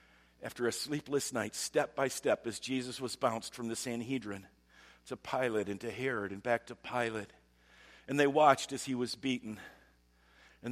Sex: male